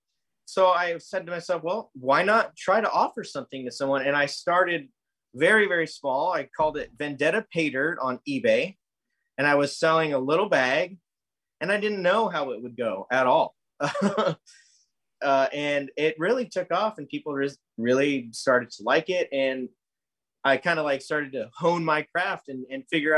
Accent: American